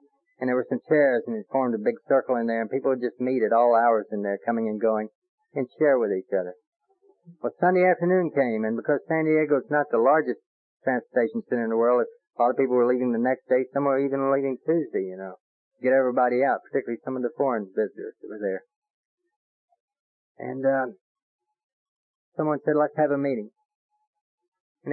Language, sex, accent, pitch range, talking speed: English, male, American, 115-180 Hz, 205 wpm